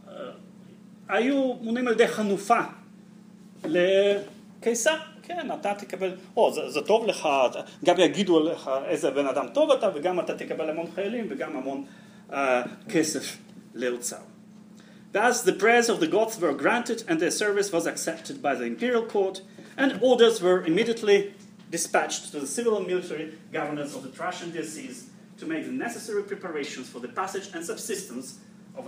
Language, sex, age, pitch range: Hebrew, male, 30-49, 190-230 Hz